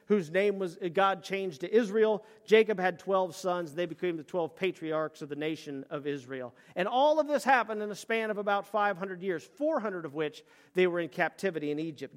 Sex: male